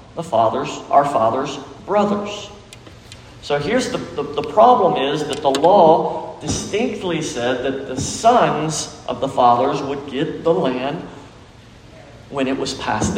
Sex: male